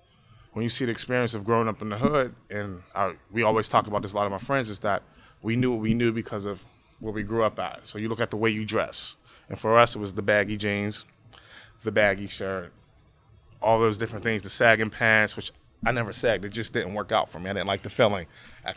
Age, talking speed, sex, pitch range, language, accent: 20-39, 255 wpm, male, 105-115 Hz, English, American